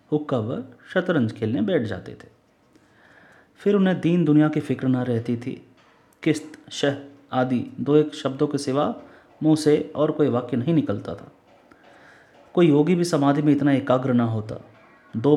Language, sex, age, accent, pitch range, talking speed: Hindi, male, 30-49, native, 115-150 Hz, 165 wpm